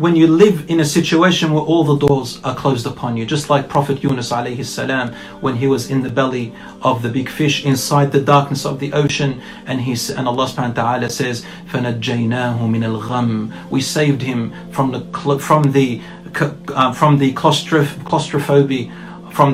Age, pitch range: 30-49, 125-155 Hz